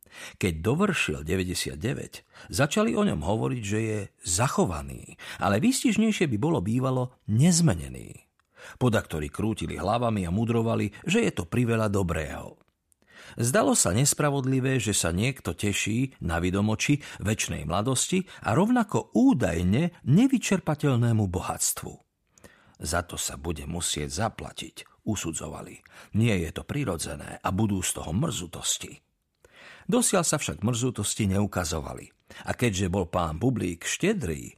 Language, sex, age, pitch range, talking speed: Slovak, male, 50-69, 95-145 Hz, 120 wpm